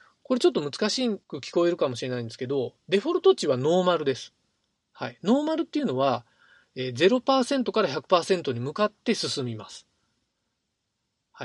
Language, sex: Japanese, male